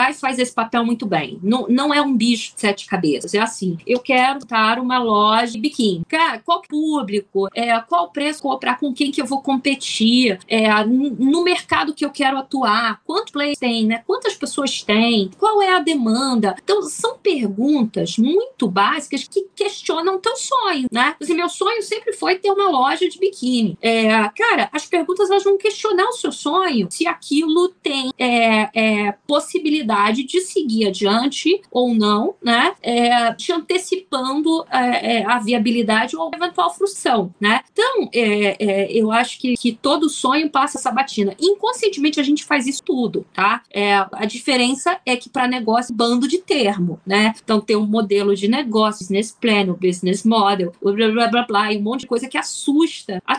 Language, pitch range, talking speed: Portuguese, 225-340 Hz, 170 wpm